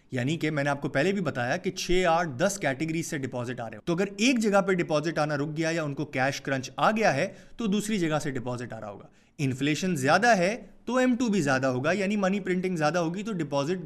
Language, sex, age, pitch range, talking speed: Urdu, male, 30-49, 145-195 Hz, 240 wpm